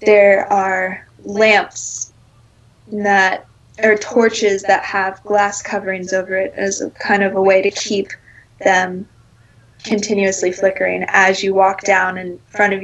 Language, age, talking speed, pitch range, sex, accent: English, 20-39, 140 wpm, 130-210 Hz, female, American